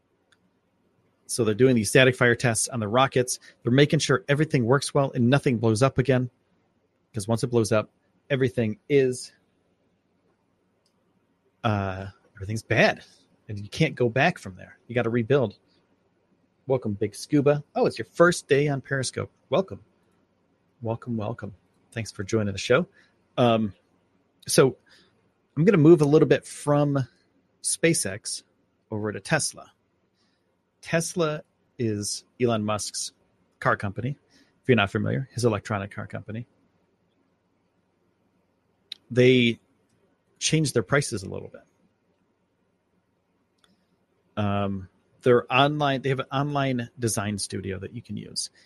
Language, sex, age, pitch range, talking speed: English, male, 30-49, 95-130 Hz, 135 wpm